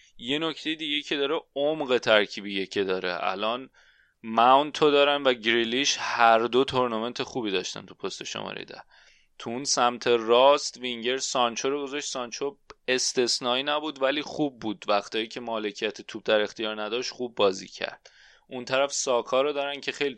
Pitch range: 105-130 Hz